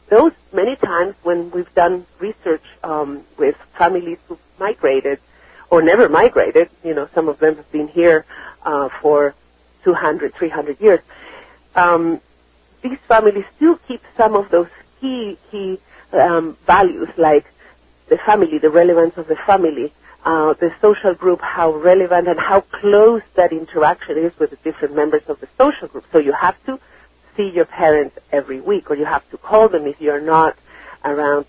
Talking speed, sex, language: 165 wpm, female, English